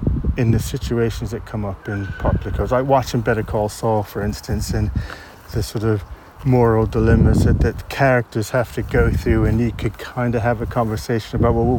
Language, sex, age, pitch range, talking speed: English, male, 30-49, 105-125 Hz, 205 wpm